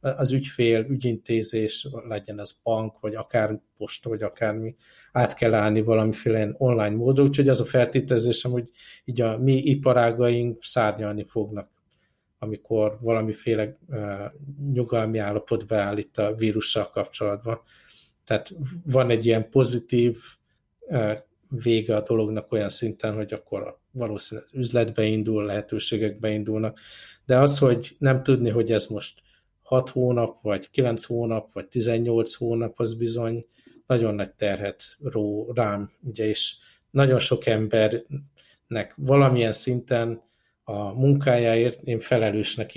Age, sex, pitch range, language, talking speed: 50-69, male, 110-125 Hz, Hungarian, 125 wpm